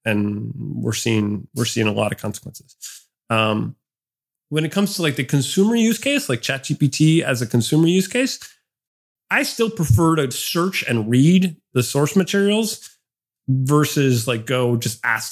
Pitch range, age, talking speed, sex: 120-155 Hz, 30-49, 160 wpm, male